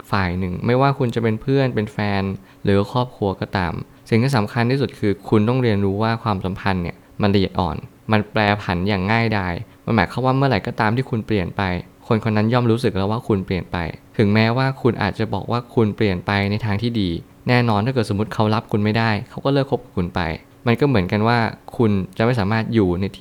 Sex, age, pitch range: male, 20-39, 100-120 Hz